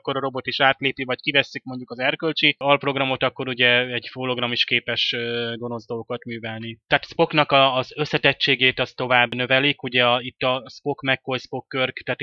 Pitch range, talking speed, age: 125-135 Hz, 175 wpm, 20-39